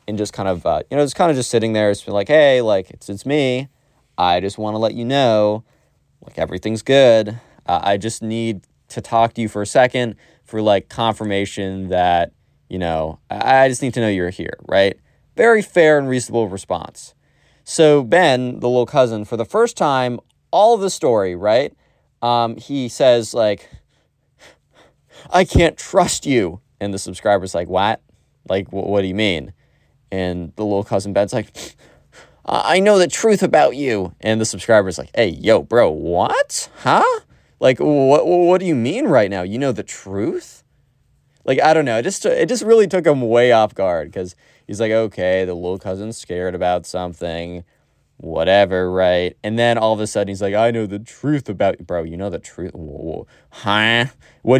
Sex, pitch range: male, 95-135 Hz